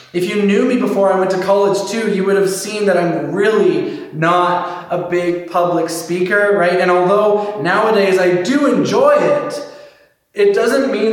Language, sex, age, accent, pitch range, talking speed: English, male, 20-39, American, 175-215 Hz, 180 wpm